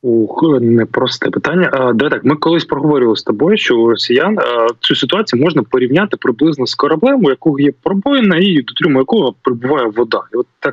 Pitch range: 115-170 Hz